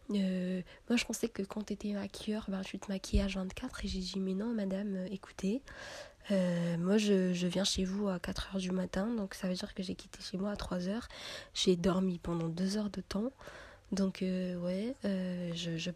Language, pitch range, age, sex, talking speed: French, 185-220 Hz, 20-39, female, 205 wpm